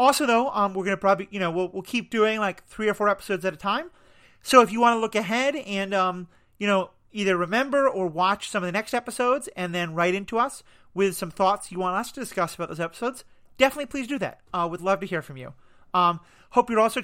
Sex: male